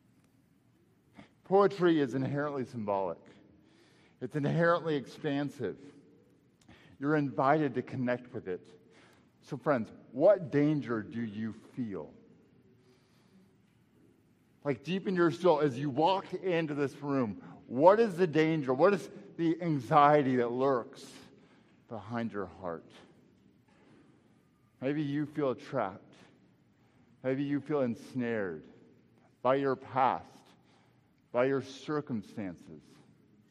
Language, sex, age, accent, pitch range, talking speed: English, male, 50-69, American, 115-150 Hz, 105 wpm